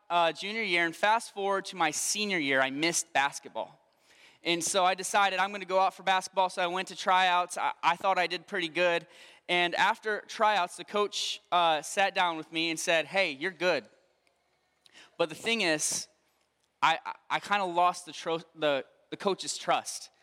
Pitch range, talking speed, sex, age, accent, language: 155-190 Hz, 200 wpm, male, 20-39, American, English